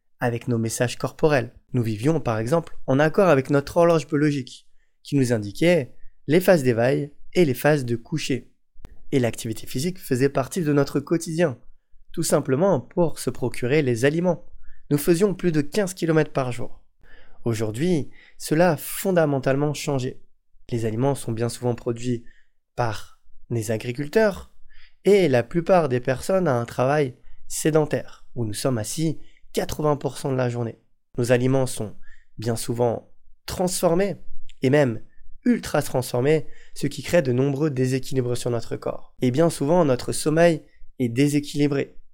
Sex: male